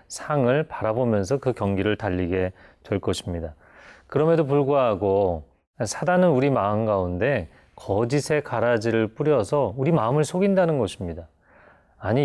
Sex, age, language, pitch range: male, 30-49, Korean, 100-140 Hz